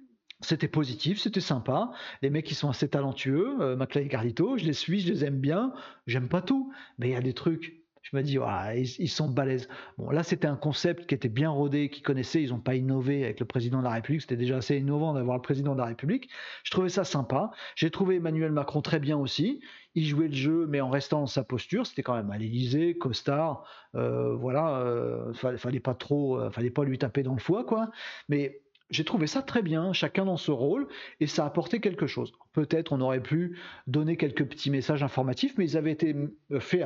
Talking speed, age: 230 wpm, 40-59